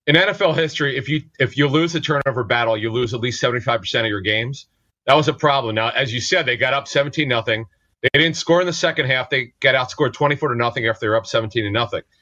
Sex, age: male, 40-59